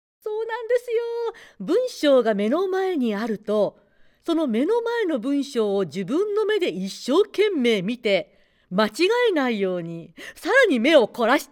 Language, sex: Japanese, female